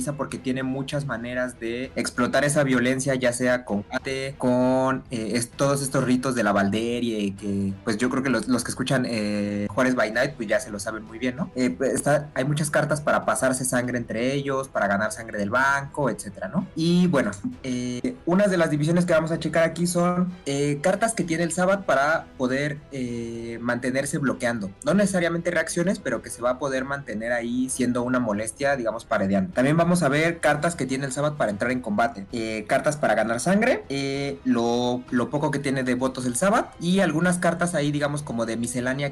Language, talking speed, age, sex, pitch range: Spanish, 205 wpm, 30-49, male, 120-145 Hz